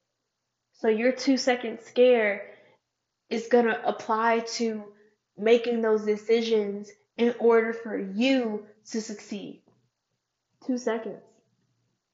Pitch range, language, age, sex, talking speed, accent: 210-235 Hz, English, 10-29, female, 100 wpm, American